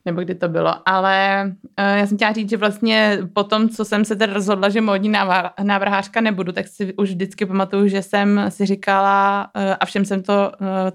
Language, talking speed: Czech, 210 wpm